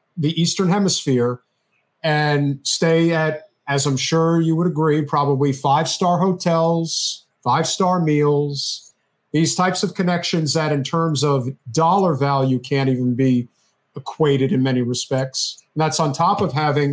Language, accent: English, American